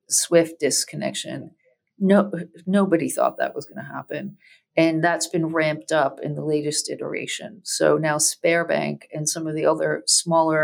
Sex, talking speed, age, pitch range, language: female, 165 wpm, 40-59, 155-195 Hz, English